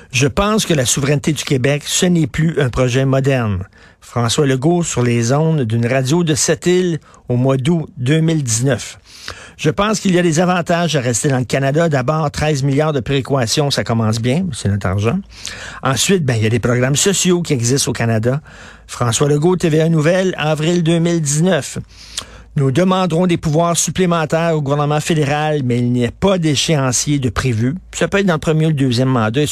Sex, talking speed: male, 190 wpm